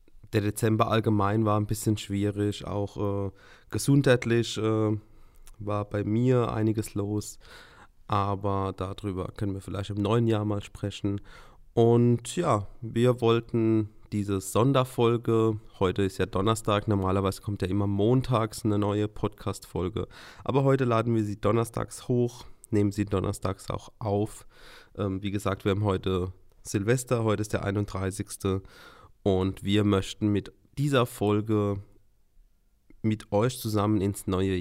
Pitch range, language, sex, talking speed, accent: 100-115 Hz, German, male, 135 wpm, German